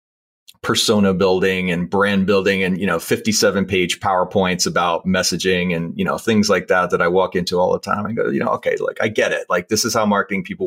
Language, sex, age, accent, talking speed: English, male, 30-49, American, 230 wpm